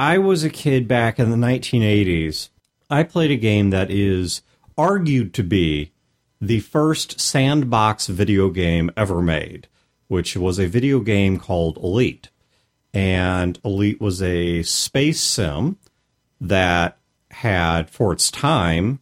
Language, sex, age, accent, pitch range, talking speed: English, male, 40-59, American, 85-135 Hz, 135 wpm